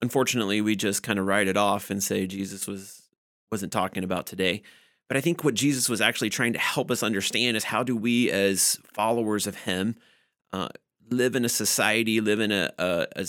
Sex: male